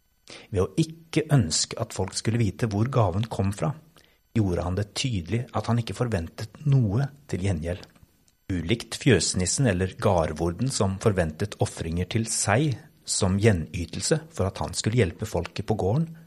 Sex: male